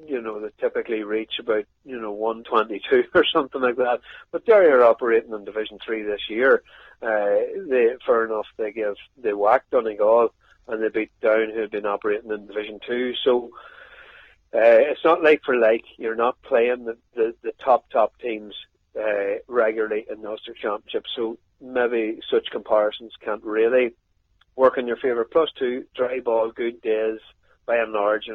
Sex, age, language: male, 30-49, English